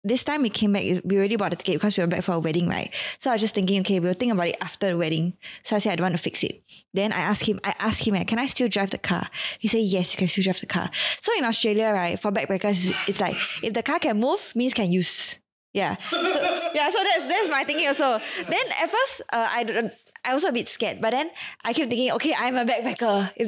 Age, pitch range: 20-39, 195-270 Hz